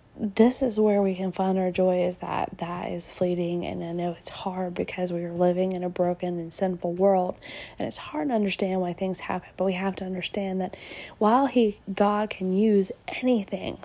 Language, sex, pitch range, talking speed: English, female, 180-210 Hz, 210 wpm